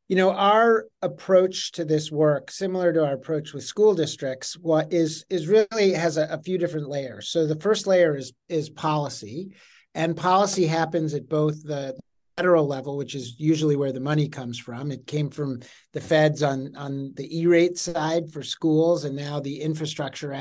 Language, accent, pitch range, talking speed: English, American, 140-170 Hz, 185 wpm